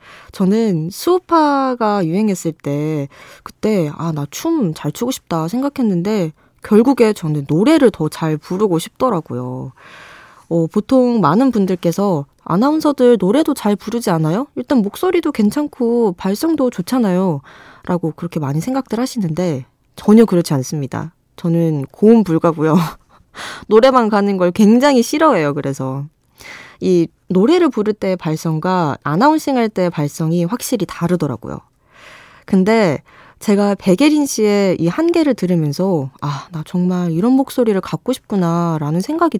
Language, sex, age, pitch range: Korean, female, 20-39, 165-250 Hz